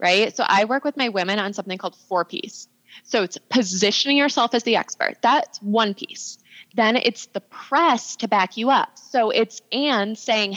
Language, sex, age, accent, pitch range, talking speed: English, female, 20-39, American, 200-280 Hz, 195 wpm